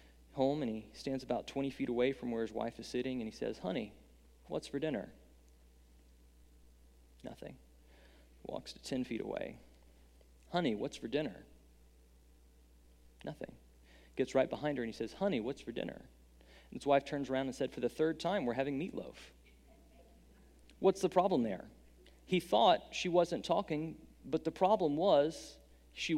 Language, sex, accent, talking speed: English, male, American, 165 wpm